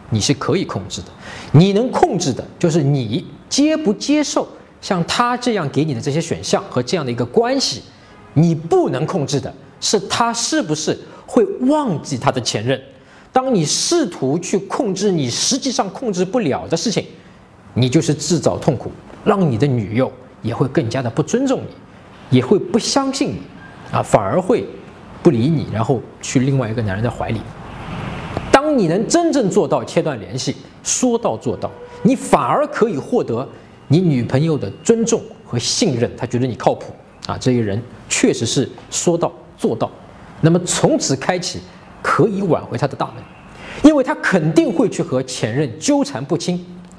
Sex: male